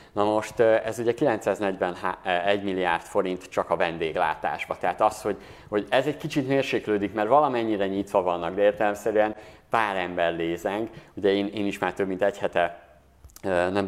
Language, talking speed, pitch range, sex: Hungarian, 160 wpm, 90-110 Hz, male